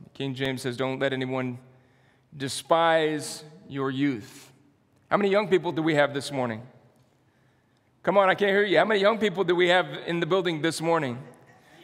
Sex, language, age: male, English, 40-59